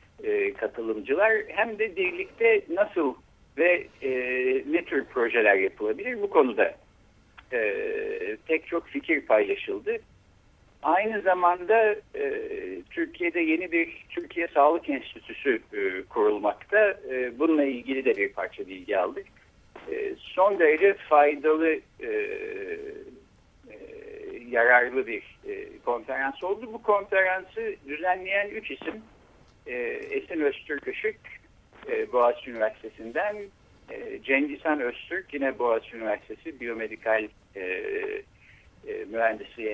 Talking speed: 85 wpm